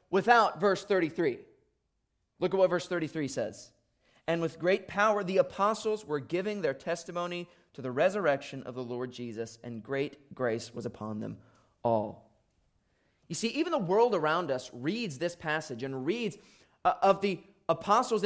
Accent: American